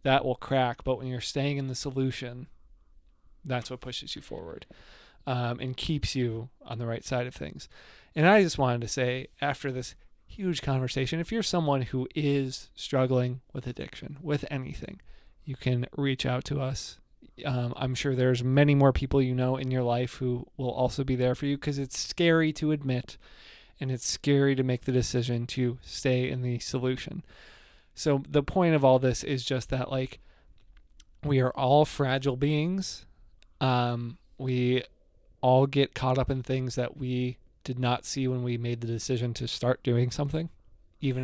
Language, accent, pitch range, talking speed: English, American, 125-140 Hz, 180 wpm